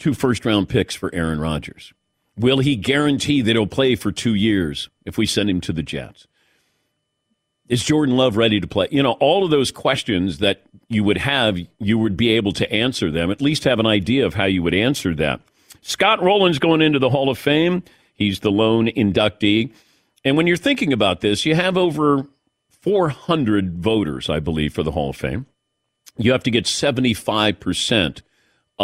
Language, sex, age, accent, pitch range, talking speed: English, male, 50-69, American, 100-130 Hz, 190 wpm